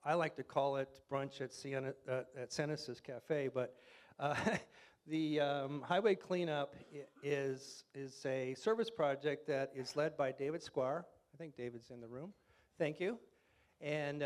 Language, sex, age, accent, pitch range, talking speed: English, male, 40-59, American, 130-160 Hz, 160 wpm